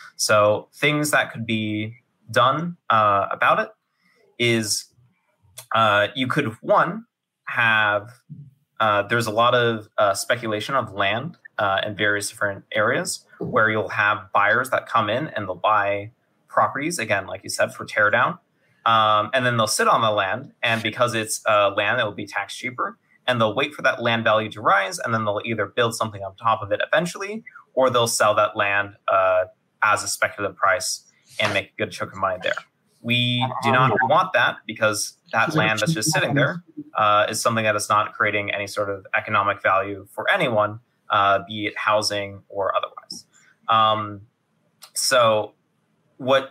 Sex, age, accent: male, 30-49, American